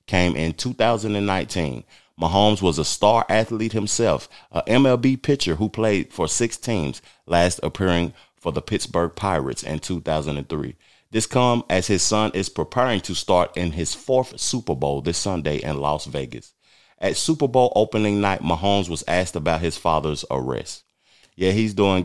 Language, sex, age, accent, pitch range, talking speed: English, male, 30-49, American, 80-110 Hz, 160 wpm